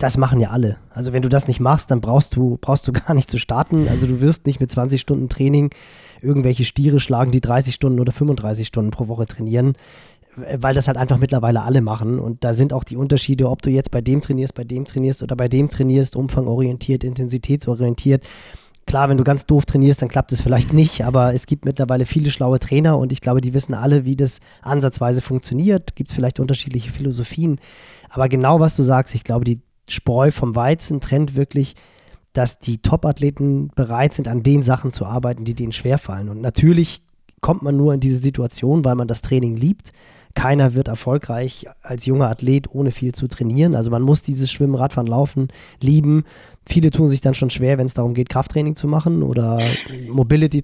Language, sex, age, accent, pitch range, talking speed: German, male, 20-39, German, 125-140 Hz, 205 wpm